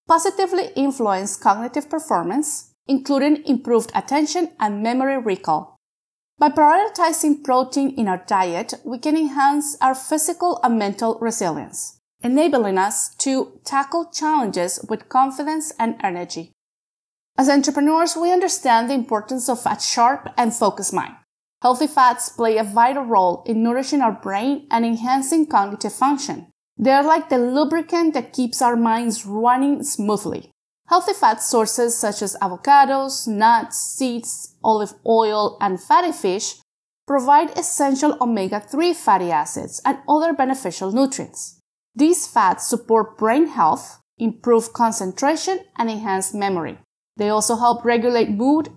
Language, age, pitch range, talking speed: English, 30-49, 220-295 Hz, 130 wpm